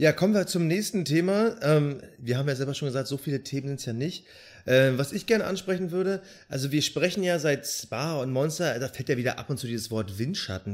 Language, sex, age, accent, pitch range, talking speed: German, male, 30-49, German, 115-155 Hz, 235 wpm